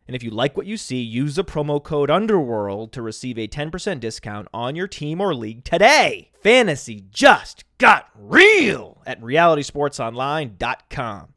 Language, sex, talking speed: English, male, 155 wpm